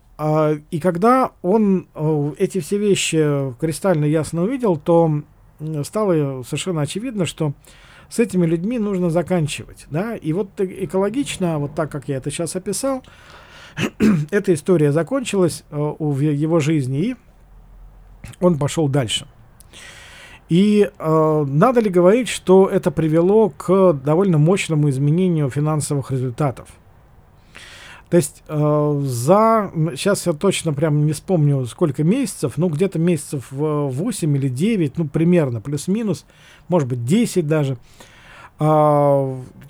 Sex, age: male, 40-59